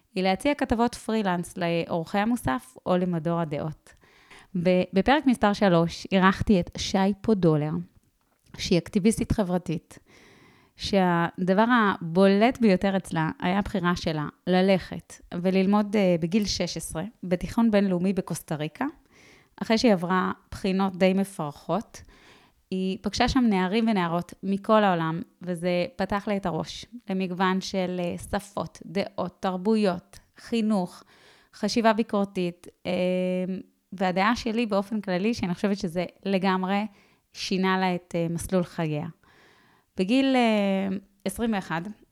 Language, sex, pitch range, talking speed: Hebrew, female, 180-210 Hz, 105 wpm